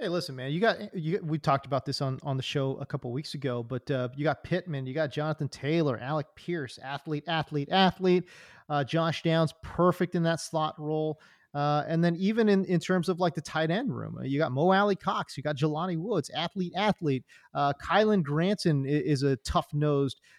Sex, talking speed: male, 215 wpm